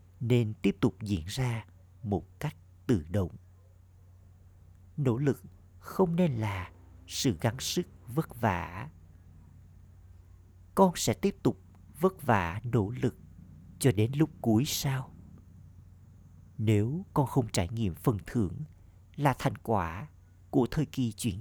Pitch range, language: 90-125 Hz, Vietnamese